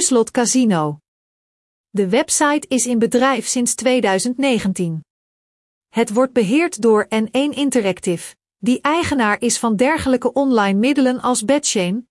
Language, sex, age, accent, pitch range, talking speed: Dutch, female, 40-59, Dutch, 205-270 Hz, 120 wpm